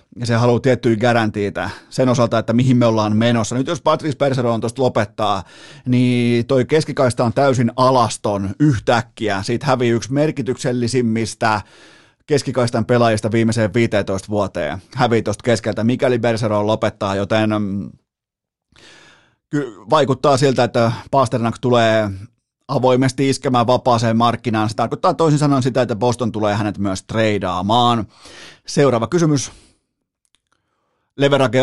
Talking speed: 125 wpm